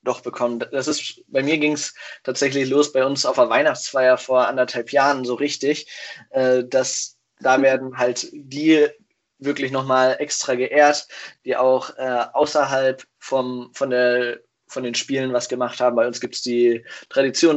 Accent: German